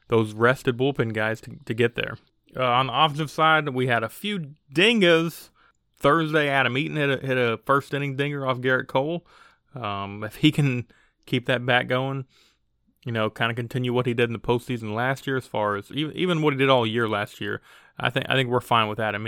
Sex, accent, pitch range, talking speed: male, American, 115-140 Hz, 220 wpm